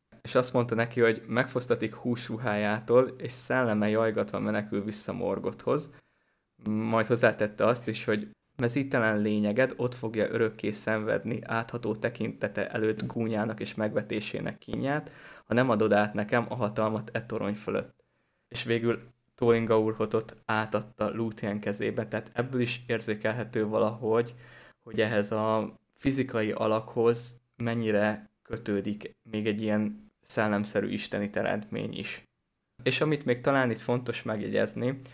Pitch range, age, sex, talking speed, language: 105-120 Hz, 20-39, male, 125 wpm, Hungarian